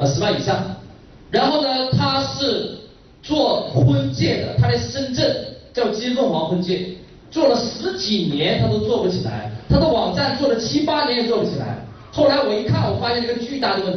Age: 30-49